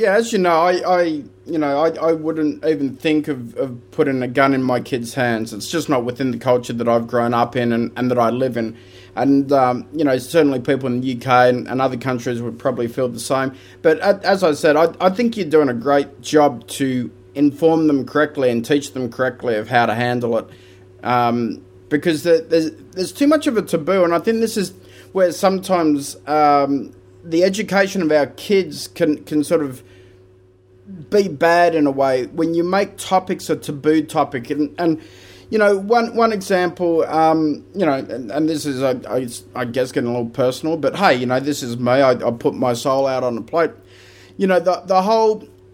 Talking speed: 215 wpm